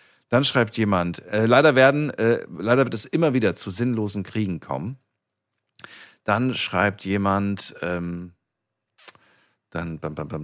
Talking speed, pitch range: 140 wpm, 90-115 Hz